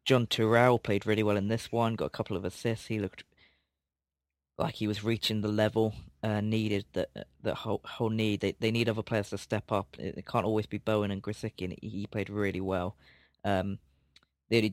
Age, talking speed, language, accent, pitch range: 20-39, 220 wpm, English, British, 95-115 Hz